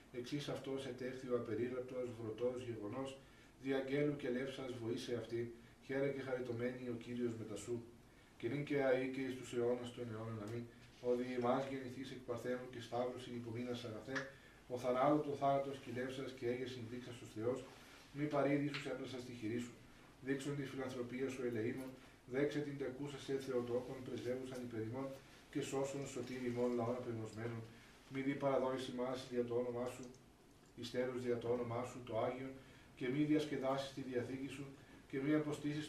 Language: Greek